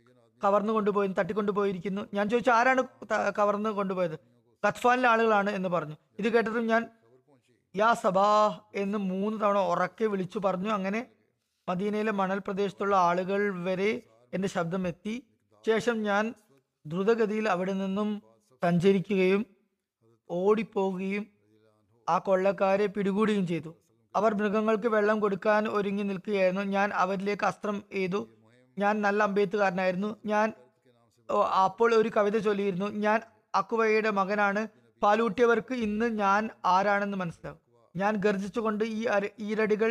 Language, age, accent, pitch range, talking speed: Malayalam, 20-39, native, 190-220 Hz, 110 wpm